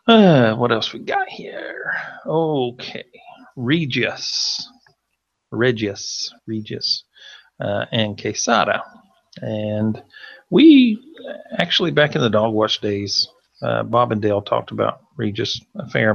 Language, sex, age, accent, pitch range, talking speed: English, male, 40-59, American, 105-120 Hz, 115 wpm